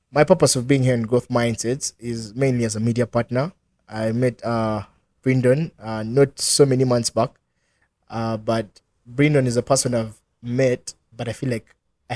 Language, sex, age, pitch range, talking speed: English, male, 20-39, 115-130 Hz, 180 wpm